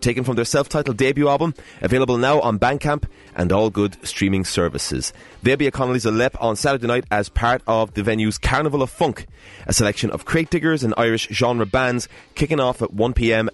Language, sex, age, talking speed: English, male, 30-49, 195 wpm